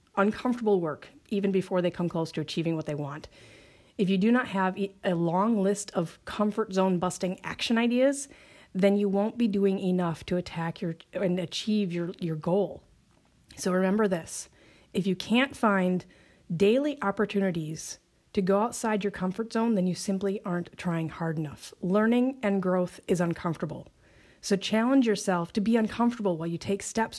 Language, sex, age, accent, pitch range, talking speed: English, female, 30-49, American, 175-210 Hz, 170 wpm